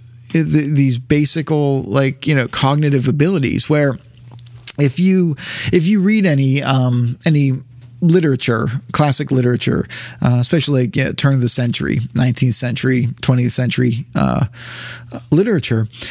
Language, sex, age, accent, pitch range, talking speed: English, male, 30-49, American, 125-155 Hz, 125 wpm